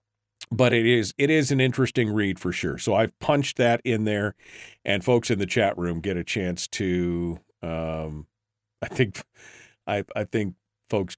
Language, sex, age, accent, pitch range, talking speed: English, male, 50-69, American, 100-135 Hz, 175 wpm